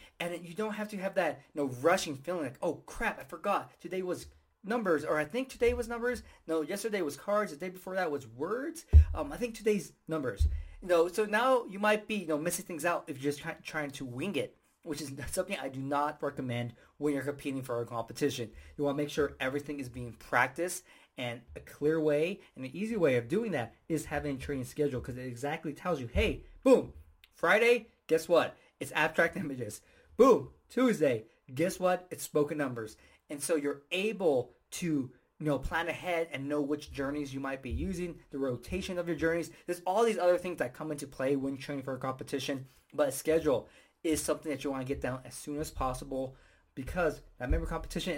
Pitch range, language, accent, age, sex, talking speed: 135-190 Hz, English, American, 20-39, male, 215 wpm